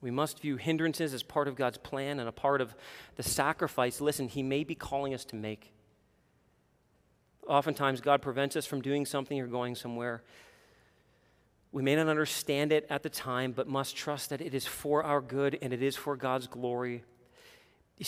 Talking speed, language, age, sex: 190 wpm, English, 40-59, male